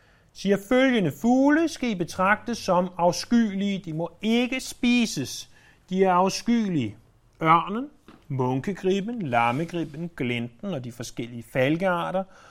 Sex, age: male, 30-49